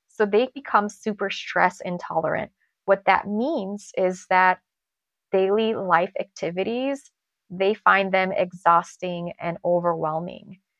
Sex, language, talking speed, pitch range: female, English, 110 wpm, 185-205 Hz